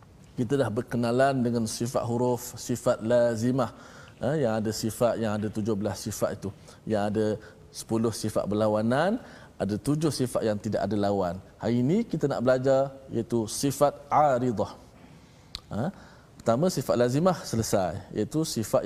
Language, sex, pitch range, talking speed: Malayalam, male, 110-145 Hz, 140 wpm